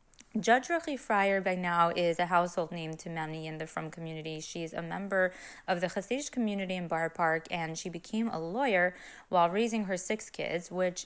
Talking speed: 195 wpm